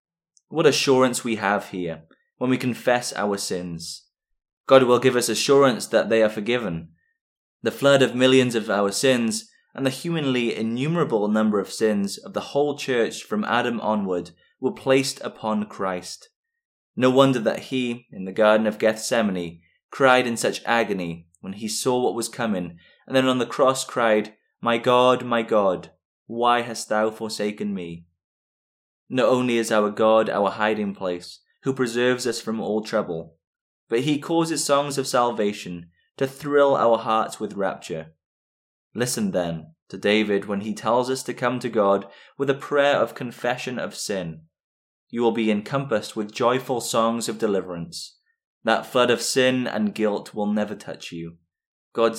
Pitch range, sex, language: 100-125 Hz, male, English